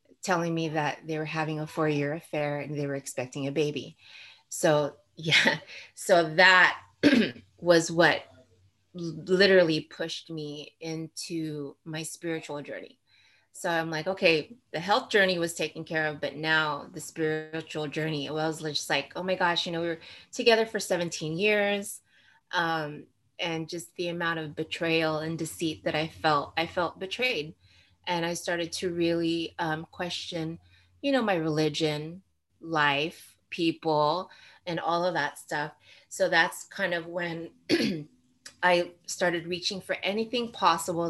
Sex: female